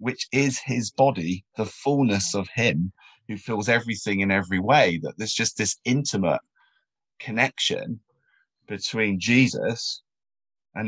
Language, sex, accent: English, male, British